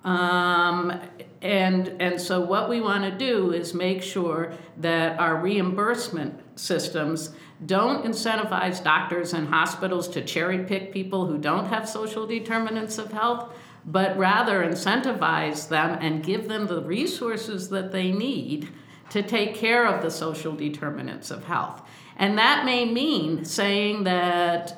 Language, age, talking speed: English, 50-69, 145 wpm